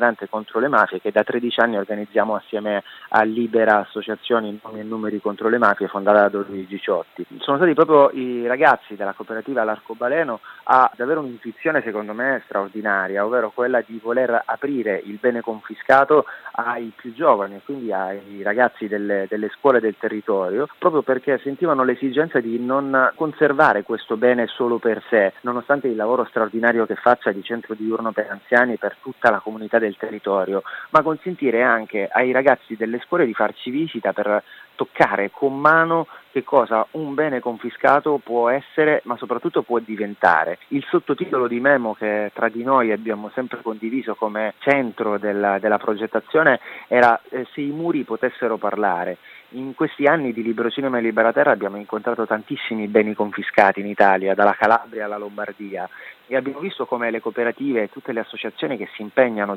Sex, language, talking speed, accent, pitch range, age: male, Italian, 165 wpm, native, 105-125 Hz, 30-49